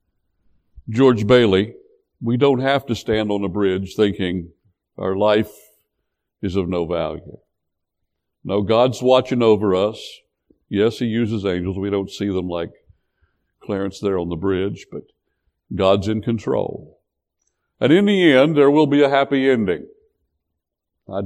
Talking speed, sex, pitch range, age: 145 wpm, male, 95-130 Hz, 60-79